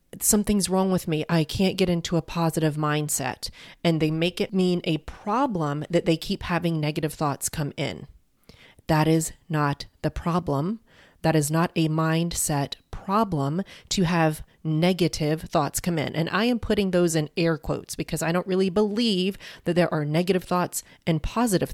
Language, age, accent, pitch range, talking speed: English, 30-49, American, 150-180 Hz, 175 wpm